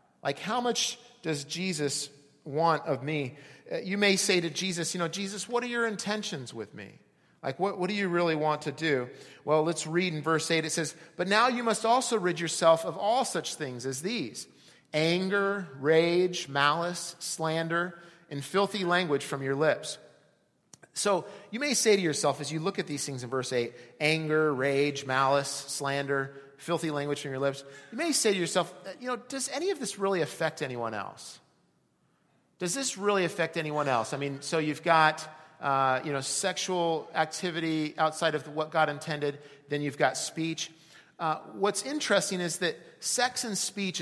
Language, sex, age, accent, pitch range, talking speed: English, male, 30-49, American, 145-185 Hz, 185 wpm